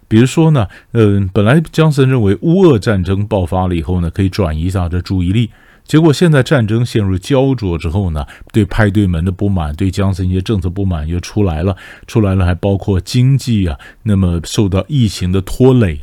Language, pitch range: Chinese, 90-120 Hz